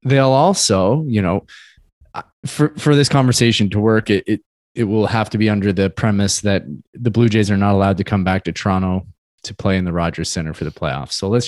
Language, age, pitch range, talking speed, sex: English, 20-39, 100-135 Hz, 225 wpm, male